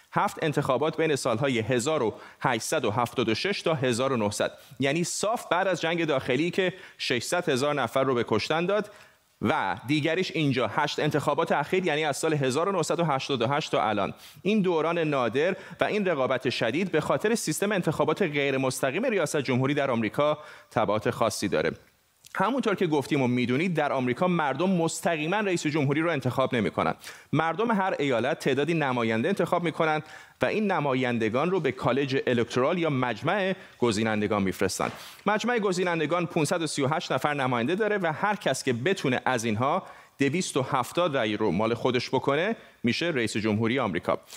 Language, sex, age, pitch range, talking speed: Persian, male, 30-49, 130-180 Hz, 145 wpm